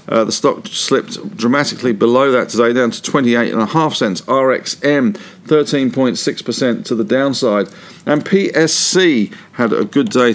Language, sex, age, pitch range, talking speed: English, male, 50-69, 115-155 Hz, 135 wpm